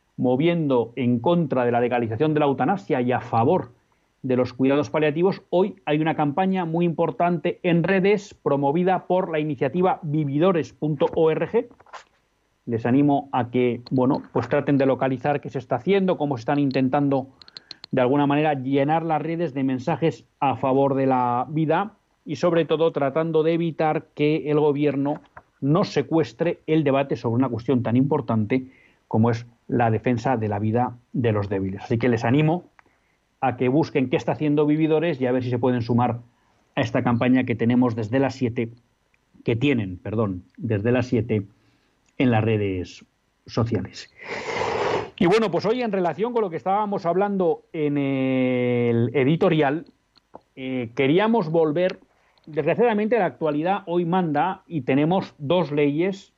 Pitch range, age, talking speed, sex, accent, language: 125-170 Hz, 40-59, 160 wpm, male, Spanish, Spanish